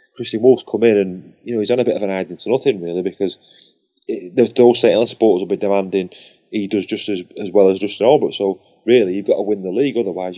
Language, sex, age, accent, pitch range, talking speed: English, male, 20-39, British, 100-140 Hz, 255 wpm